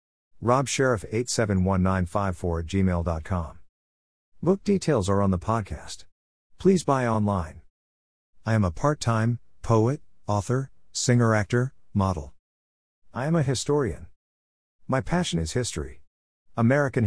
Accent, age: American, 50-69